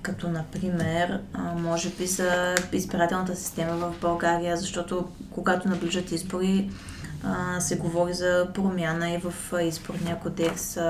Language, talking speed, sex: Bulgarian, 115 wpm, female